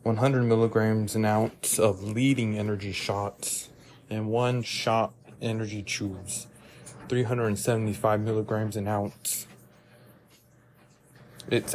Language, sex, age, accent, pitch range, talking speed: English, male, 30-49, American, 110-125 Hz, 90 wpm